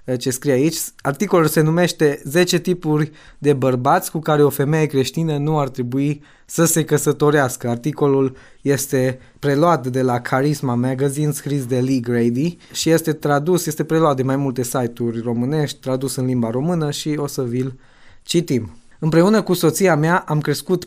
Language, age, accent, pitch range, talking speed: Romanian, 20-39, native, 130-155 Hz, 165 wpm